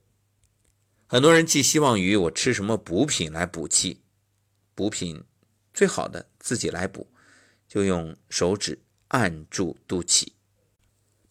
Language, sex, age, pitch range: Chinese, male, 50-69, 95-120 Hz